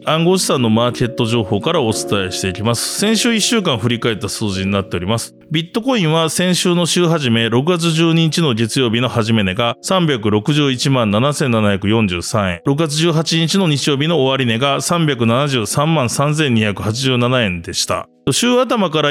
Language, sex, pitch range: Japanese, male, 115-165 Hz